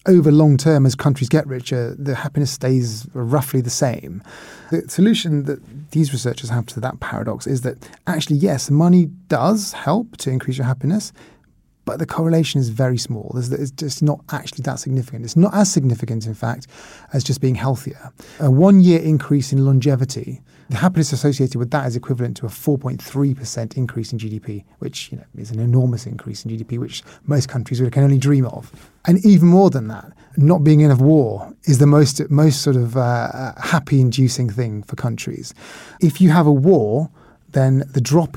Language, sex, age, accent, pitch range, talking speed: English, male, 30-49, British, 125-155 Hz, 185 wpm